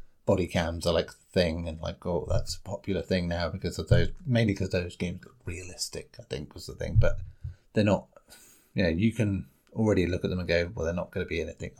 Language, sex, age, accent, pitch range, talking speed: English, male, 30-49, British, 95-130 Hz, 245 wpm